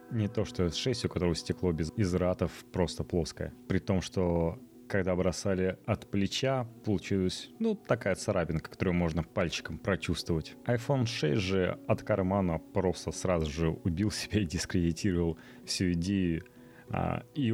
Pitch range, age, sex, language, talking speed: 85-110 Hz, 30-49, male, Russian, 140 wpm